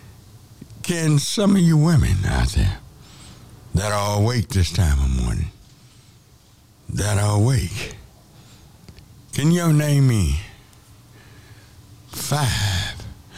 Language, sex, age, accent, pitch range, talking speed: English, male, 60-79, American, 100-120 Hz, 100 wpm